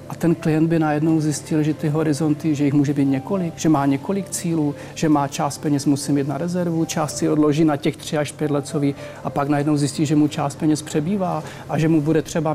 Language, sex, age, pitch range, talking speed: Czech, male, 40-59, 145-165 Hz, 235 wpm